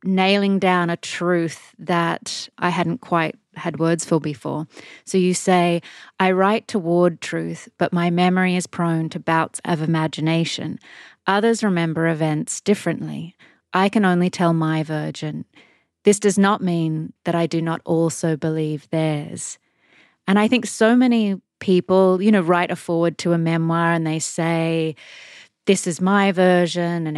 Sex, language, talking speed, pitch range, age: female, English, 155 wpm, 165-200 Hz, 20-39